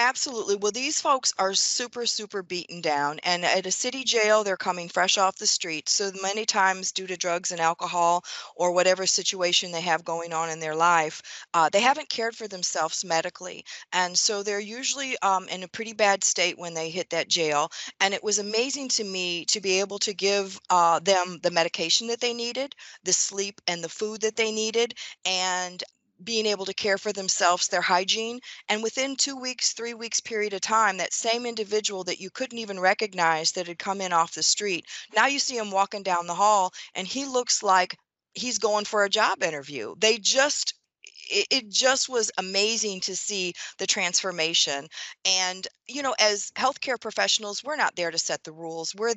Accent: American